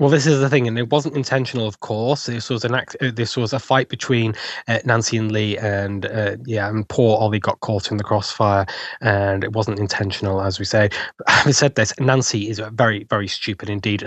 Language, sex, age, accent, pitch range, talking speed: English, male, 10-29, British, 105-115 Hz, 225 wpm